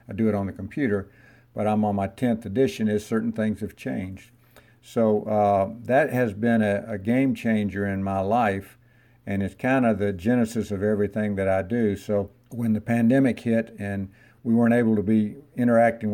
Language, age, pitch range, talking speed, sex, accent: English, 50-69, 100-115 Hz, 195 wpm, male, American